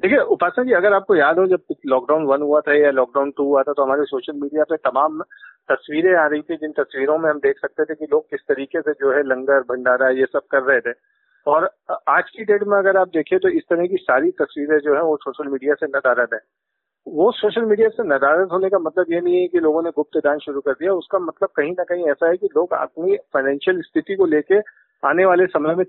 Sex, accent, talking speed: male, native, 245 wpm